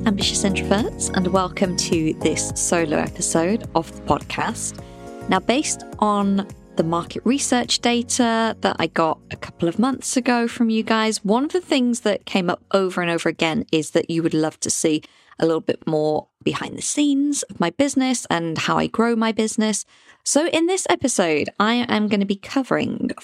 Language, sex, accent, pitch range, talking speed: English, female, British, 170-245 Hz, 190 wpm